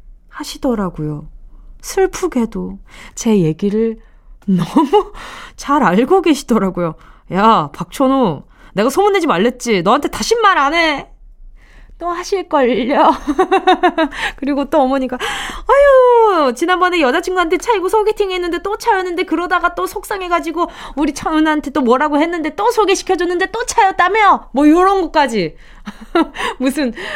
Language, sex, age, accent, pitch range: Korean, female, 20-39, native, 225-355 Hz